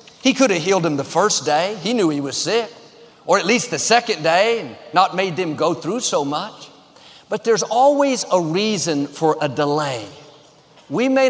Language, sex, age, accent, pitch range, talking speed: English, male, 50-69, American, 165-215 Hz, 195 wpm